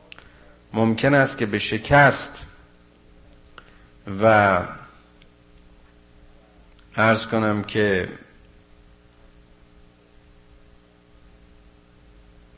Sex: male